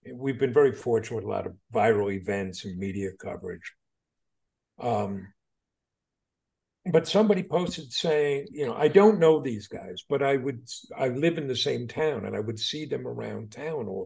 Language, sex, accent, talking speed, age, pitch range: English, male, American, 180 wpm, 50-69, 110-155 Hz